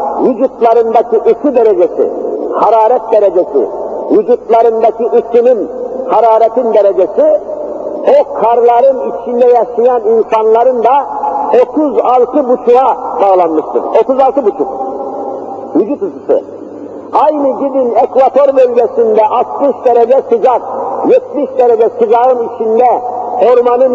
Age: 50-69